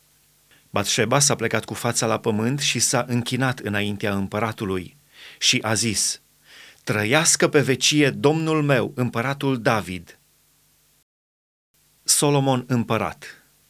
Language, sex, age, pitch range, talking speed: Romanian, male, 30-49, 115-145 Hz, 105 wpm